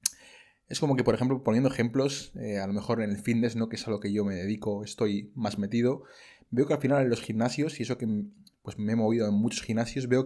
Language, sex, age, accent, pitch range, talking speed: Spanish, male, 20-39, Spanish, 110-135 Hz, 255 wpm